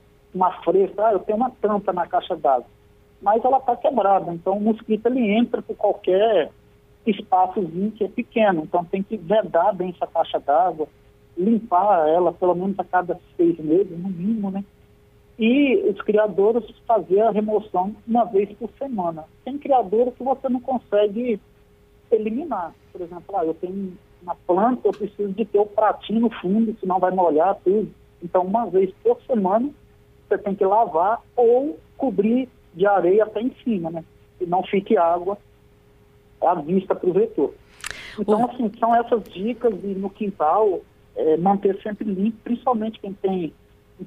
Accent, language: Brazilian, Portuguese